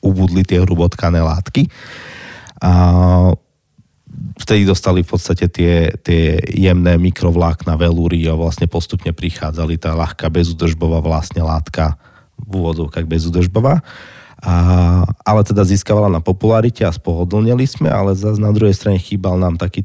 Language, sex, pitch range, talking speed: Slovak, male, 85-100 Hz, 130 wpm